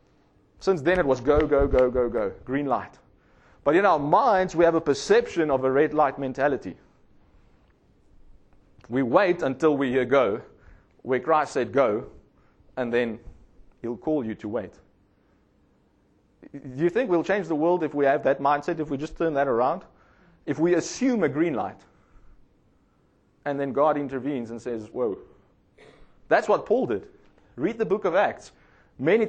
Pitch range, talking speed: 130-170 Hz, 170 wpm